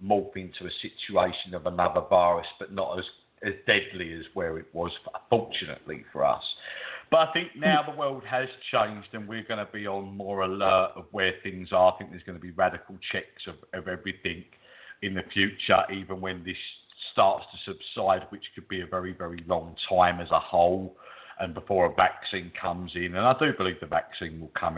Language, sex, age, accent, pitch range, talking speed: English, male, 50-69, British, 85-105 Hz, 205 wpm